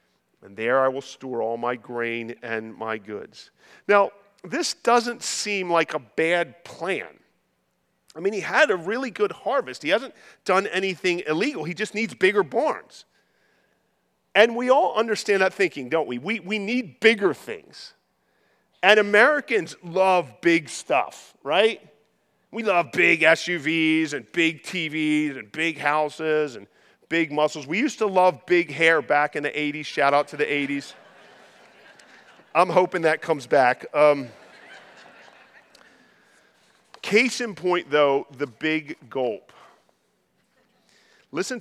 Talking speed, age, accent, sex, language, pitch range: 140 wpm, 40-59, American, male, English, 140-200 Hz